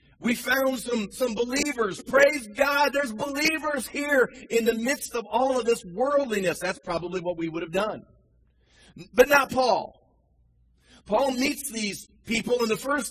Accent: American